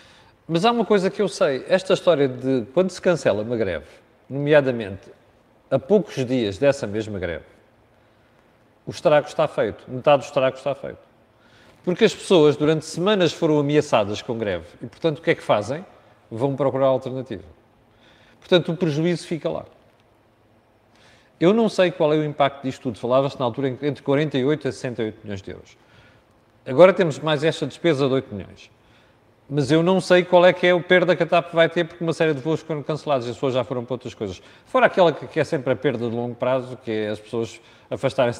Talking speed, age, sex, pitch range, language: 200 wpm, 40-59, male, 120-165 Hz, Portuguese